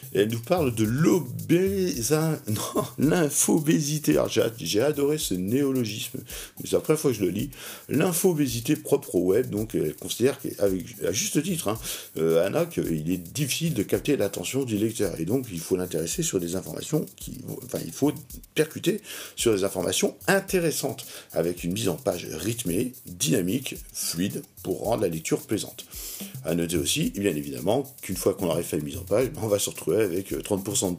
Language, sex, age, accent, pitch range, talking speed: French, male, 50-69, French, 90-145 Hz, 180 wpm